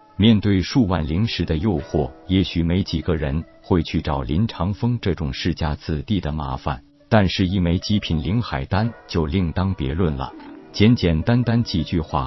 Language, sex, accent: Chinese, male, native